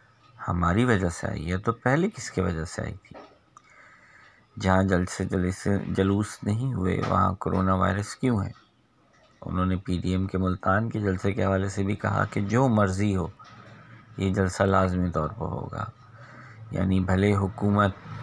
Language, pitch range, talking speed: Urdu, 90-105 Hz, 170 wpm